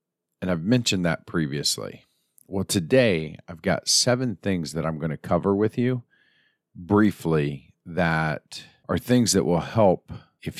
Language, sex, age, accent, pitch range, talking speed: English, male, 40-59, American, 75-95 Hz, 145 wpm